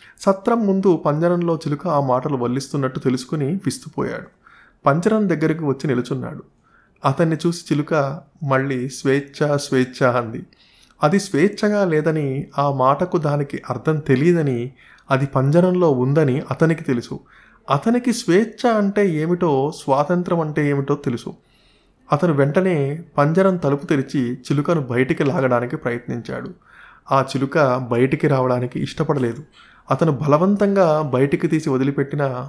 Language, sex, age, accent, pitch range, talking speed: Telugu, male, 30-49, native, 130-160 Hz, 110 wpm